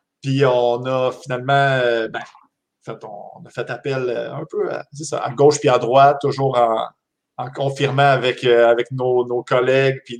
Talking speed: 180 wpm